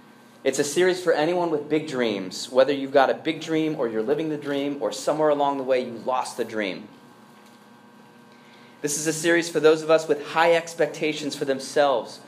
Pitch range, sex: 140-175 Hz, male